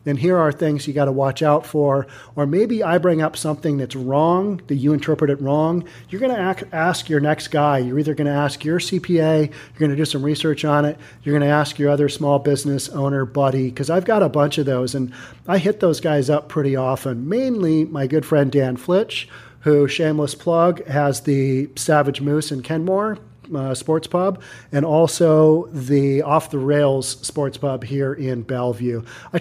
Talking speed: 205 wpm